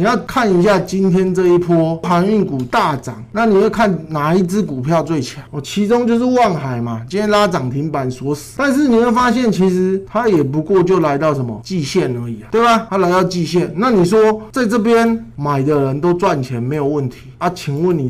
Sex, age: male, 20-39